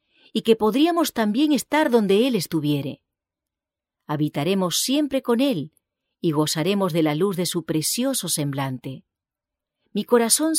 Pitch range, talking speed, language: 160-235 Hz, 130 wpm, English